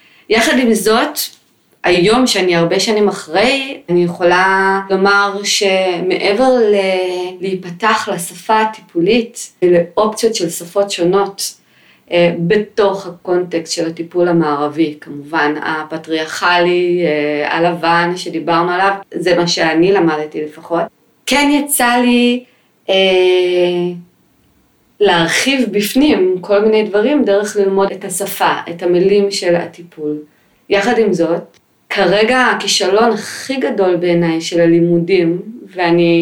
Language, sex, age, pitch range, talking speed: Hebrew, female, 20-39, 170-210 Hz, 110 wpm